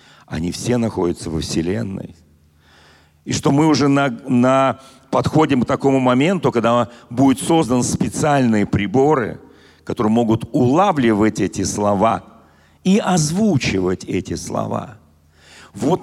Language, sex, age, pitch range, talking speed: Russian, male, 50-69, 120-165 Hz, 110 wpm